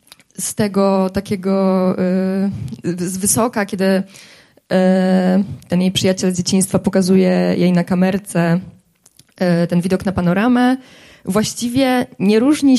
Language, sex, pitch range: Polish, female, 185-215 Hz